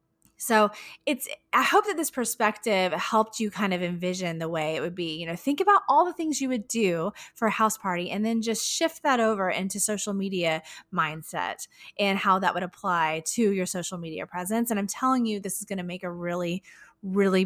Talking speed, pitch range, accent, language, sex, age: 215 wpm, 190-275 Hz, American, English, female, 20-39